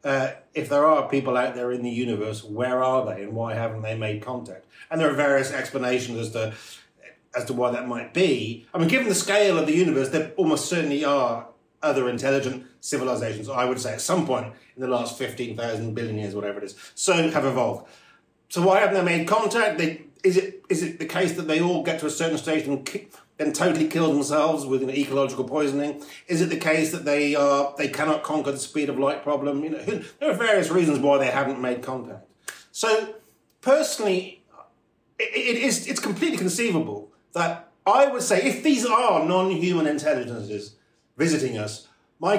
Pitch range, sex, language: 130-175 Hz, male, English